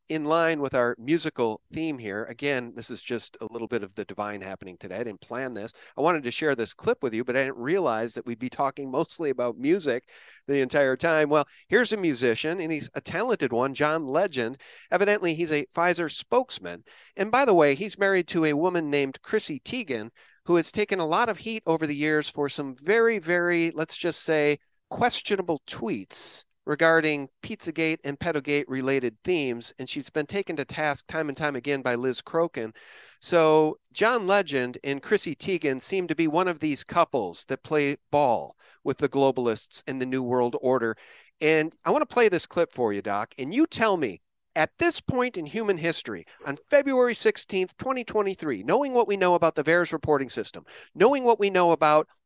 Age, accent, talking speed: 40-59, American, 200 wpm